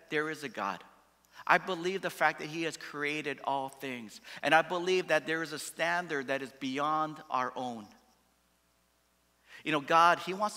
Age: 50-69